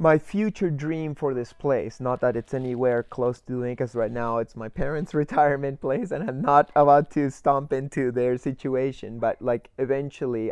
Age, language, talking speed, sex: 20-39, English, 190 wpm, male